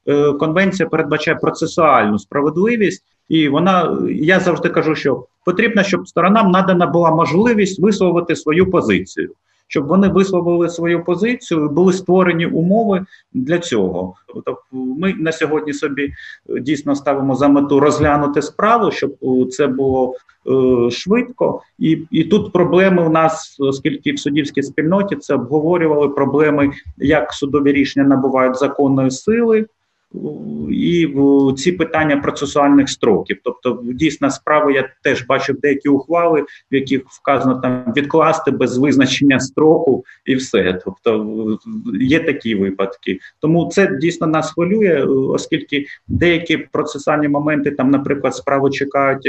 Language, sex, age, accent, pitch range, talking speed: Ukrainian, male, 30-49, native, 135-170 Hz, 125 wpm